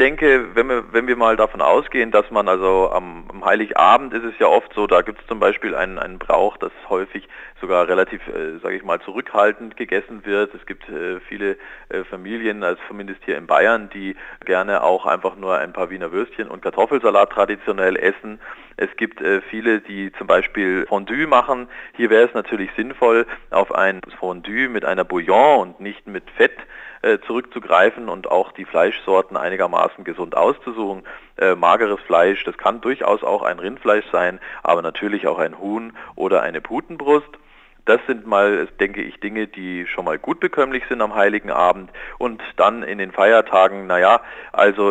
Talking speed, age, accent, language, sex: 180 wpm, 40-59, German, German, male